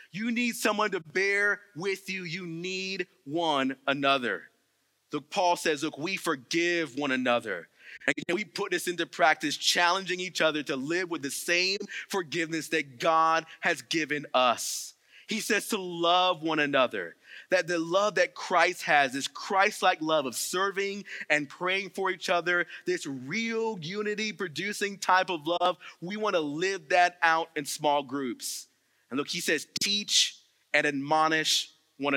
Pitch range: 155-200 Hz